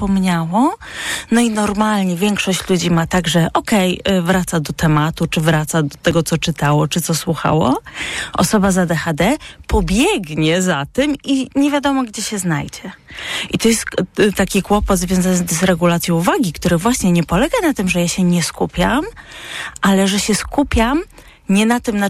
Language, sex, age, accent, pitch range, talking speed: Polish, female, 30-49, native, 170-200 Hz, 170 wpm